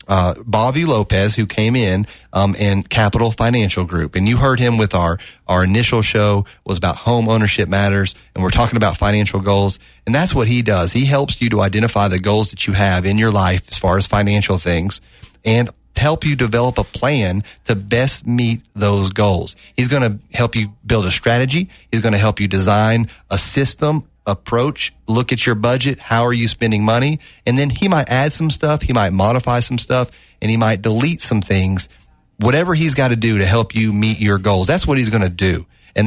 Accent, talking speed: American, 210 wpm